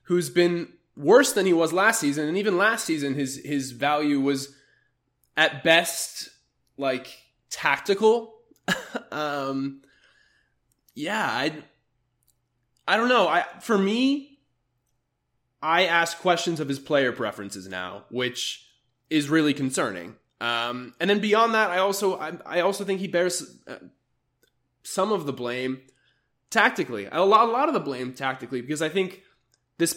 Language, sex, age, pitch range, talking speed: English, male, 20-39, 130-170 Hz, 145 wpm